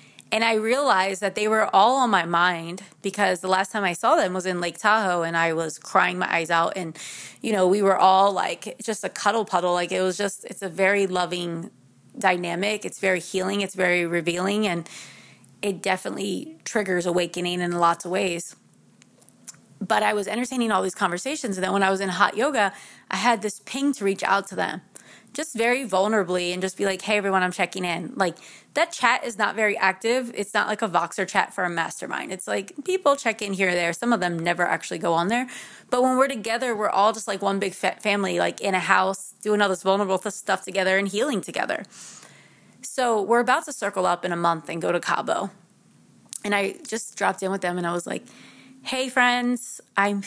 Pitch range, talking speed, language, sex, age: 180-225 Hz, 215 wpm, English, female, 20-39